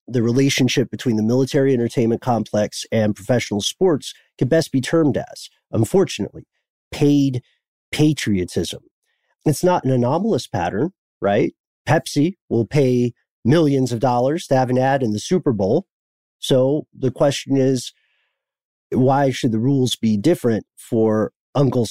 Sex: male